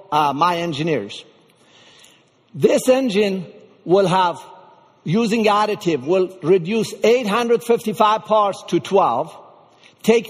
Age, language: 50-69, English